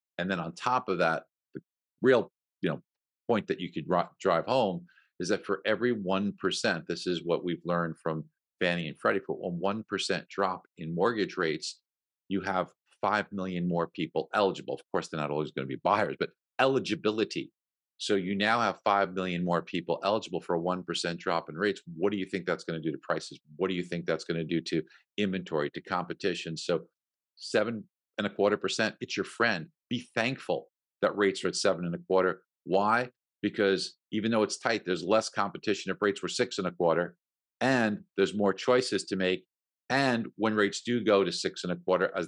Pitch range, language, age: 85-100 Hz, English, 50-69